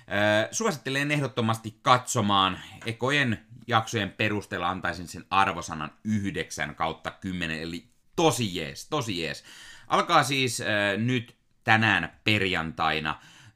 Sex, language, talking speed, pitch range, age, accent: male, Finnish, 95 wpm, 95-125 Hz, 30-49, native